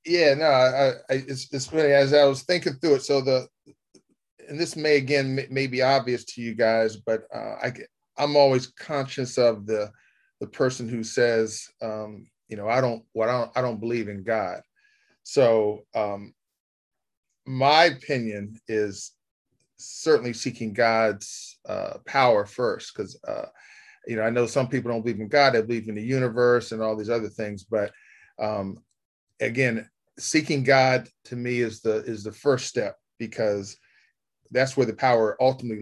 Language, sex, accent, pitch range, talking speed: English, male, American, 110-135 Hz, 165 wpm